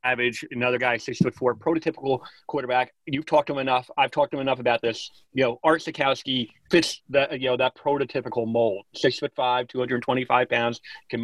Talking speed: 200 wpm